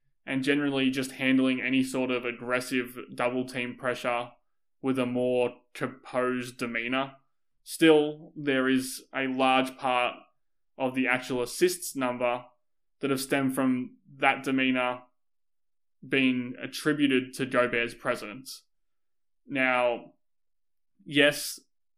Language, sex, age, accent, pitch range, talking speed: English, male, 20-39, Australian, 125-140 Hz, 105 wpm